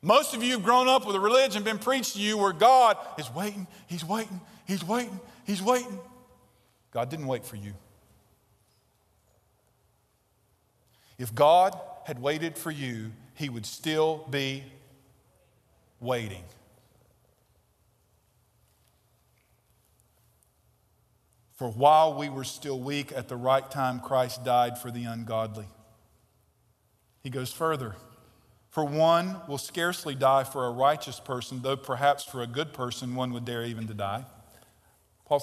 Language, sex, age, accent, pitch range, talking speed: English, male, 40-59, American, 115-175 Hz, 135 wpm